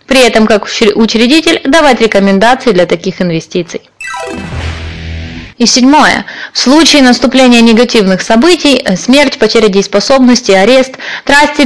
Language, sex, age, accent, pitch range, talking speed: Russian, female, 20-39, native, 215-290 Hz, 105 wpm